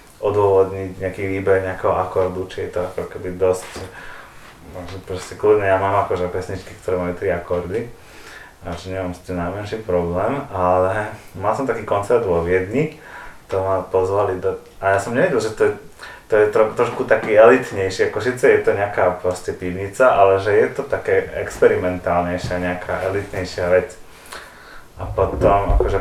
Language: Slovak